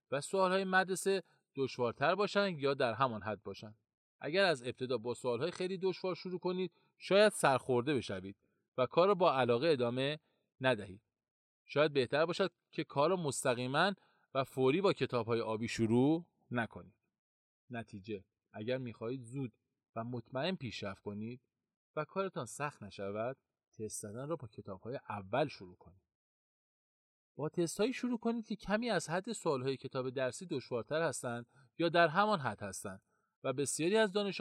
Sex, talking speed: male, 155 wpm